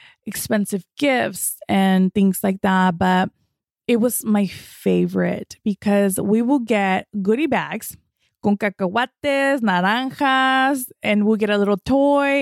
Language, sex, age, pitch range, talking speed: English, female, 20-39, 190-225 Hz, 125 wpm